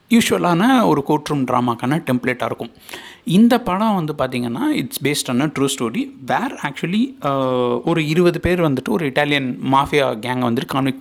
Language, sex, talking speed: Tamil, male, 140 wpm